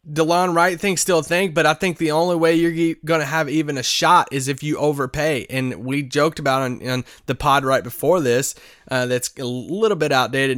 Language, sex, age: English, male, 20-39